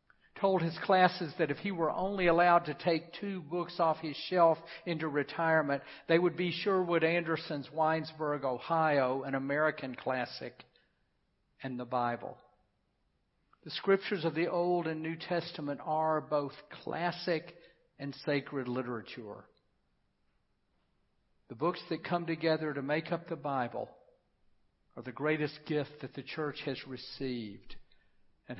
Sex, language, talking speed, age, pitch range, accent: male, English, 135 wpm, 50-69, 130-165 Hz, American